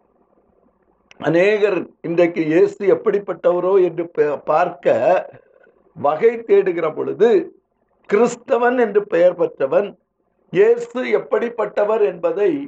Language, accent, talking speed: Tamil, native, 75 wpm